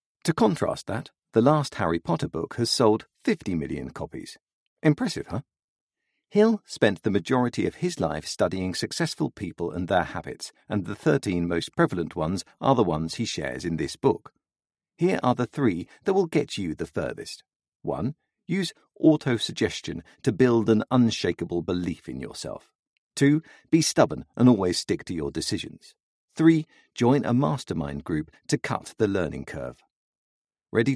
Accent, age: British, 50-69